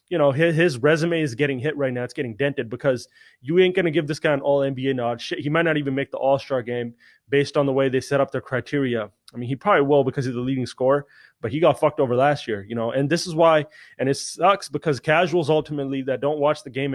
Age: 20-39